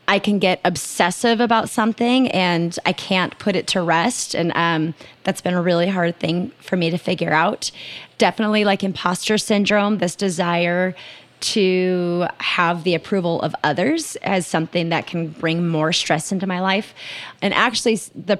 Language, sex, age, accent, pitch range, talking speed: English, female, 30-49, American, 170-200 Hz, 165 wpm